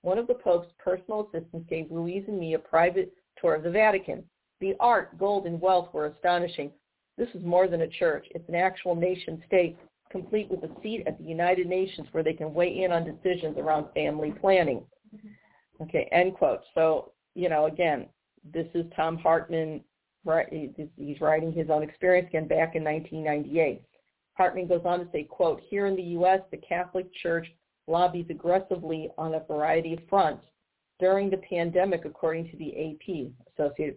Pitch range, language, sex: 160-190 Hz, English, female